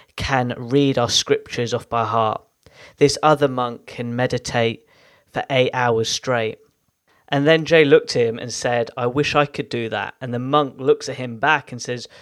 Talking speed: 190 wpm